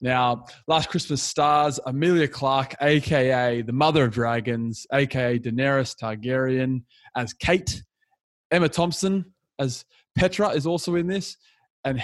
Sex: male